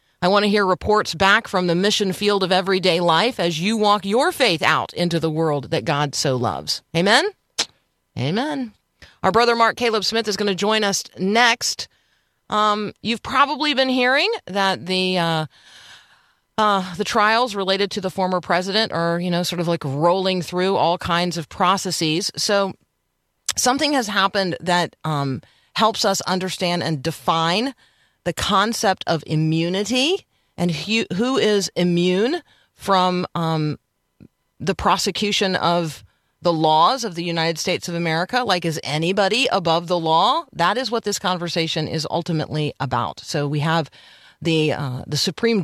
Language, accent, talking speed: English, American, 160 wpm